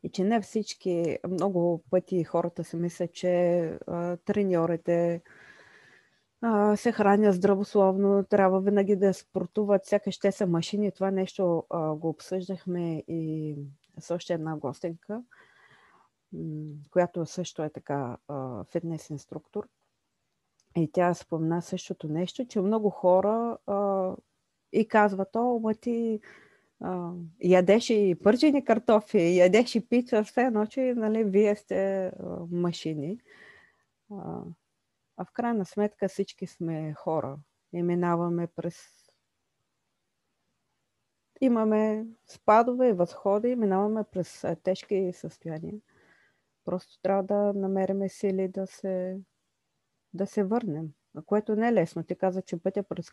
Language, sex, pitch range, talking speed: Bulgarian, female, 170-210 Hz, 120 wpm